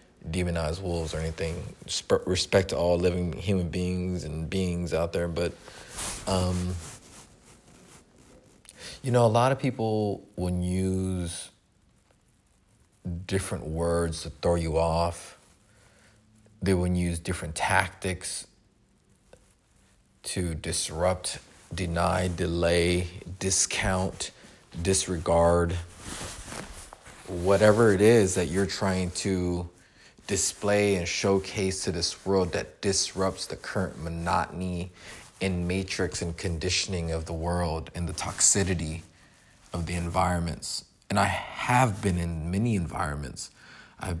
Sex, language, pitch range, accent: male, English, 85-95 Hz, American